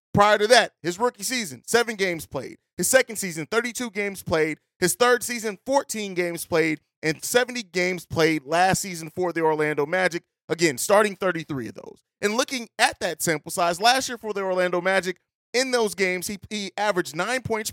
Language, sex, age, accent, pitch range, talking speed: English, male, 30-49, American, 170-225 Hz, 190 wpm